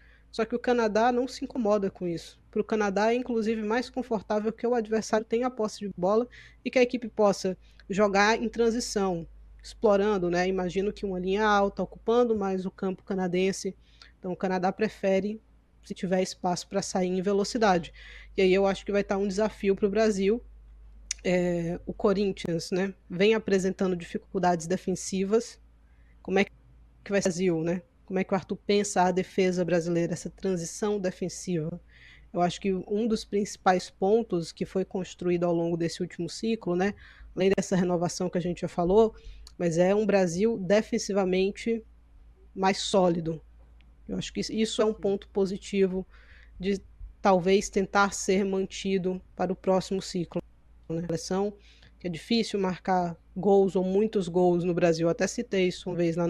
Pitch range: 180-210 Hz